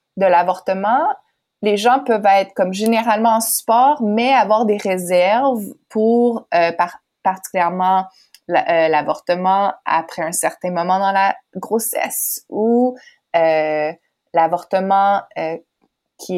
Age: 20-39